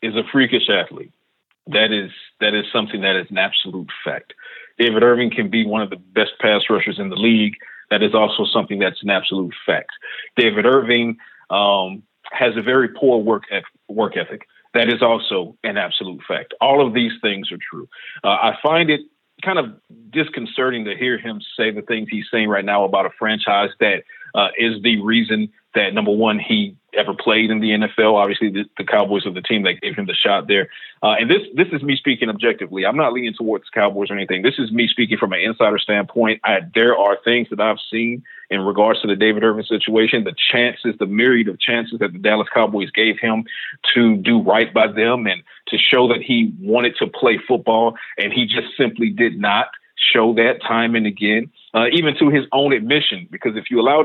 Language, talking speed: English, 210 wpm